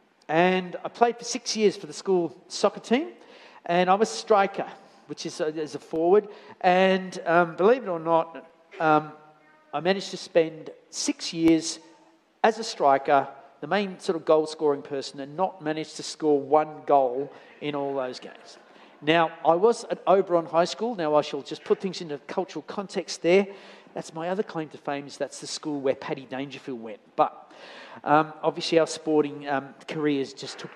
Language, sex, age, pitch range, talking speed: English, male, 50-69, 150-190 Hz, 185 wpm